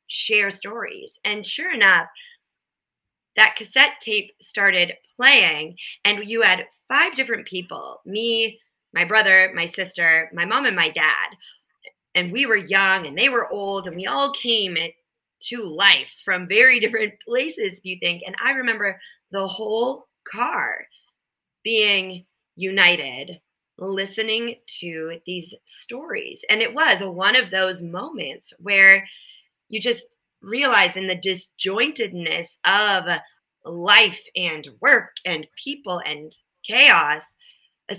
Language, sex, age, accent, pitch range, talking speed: English, female, 20-39, American, 175-230 Hz, 130 wpm